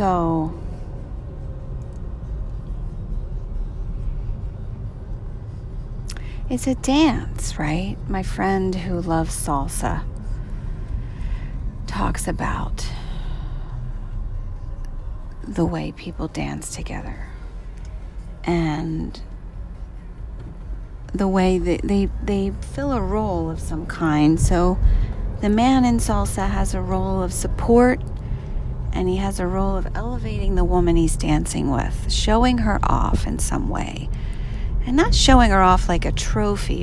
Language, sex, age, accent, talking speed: English, female, 40-59, American, 105 wpm